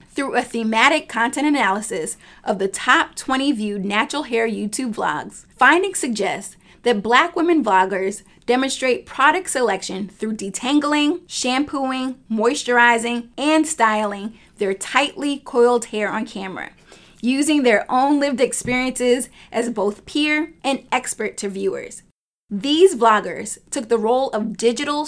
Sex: female